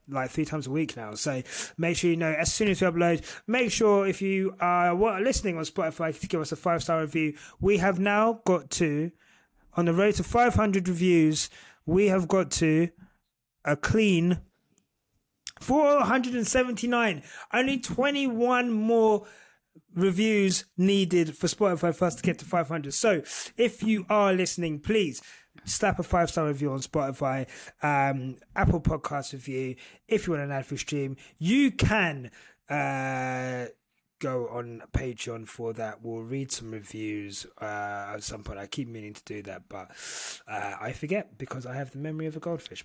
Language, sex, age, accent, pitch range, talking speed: English, male, 30-49, British, 130-195 Hz, 170 wpm